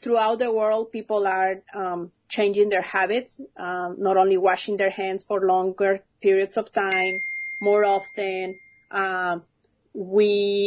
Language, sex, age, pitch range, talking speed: English, female, 30-49, 195-225 Hz, 135 wpm